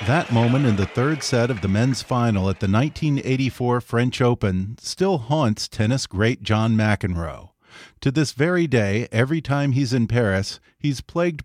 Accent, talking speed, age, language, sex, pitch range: American, 170 wpm, 40-59, English, male, 110-145 Hz